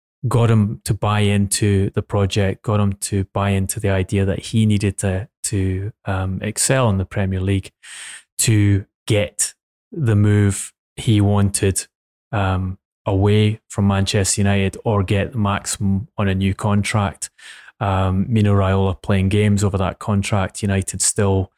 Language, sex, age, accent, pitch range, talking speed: English, male, 20-39, British, 95-105 Hz, 145 wpm